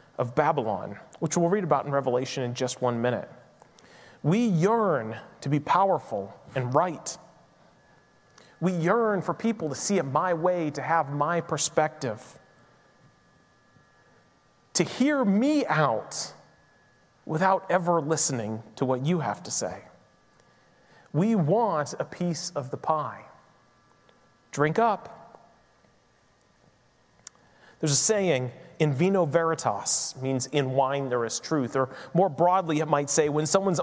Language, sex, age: English, male, 30-49